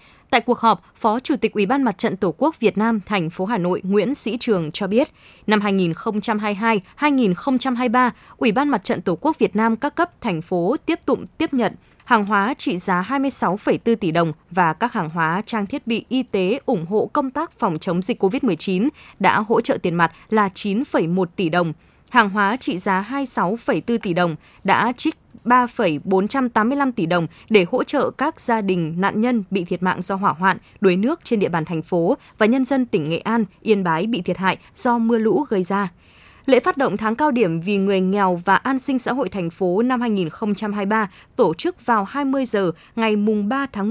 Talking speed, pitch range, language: 205 wpm, 185-245 Hz, Vietnamese